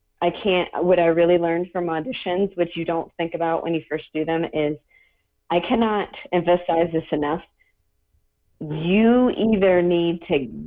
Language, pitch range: English, 165-190 Hz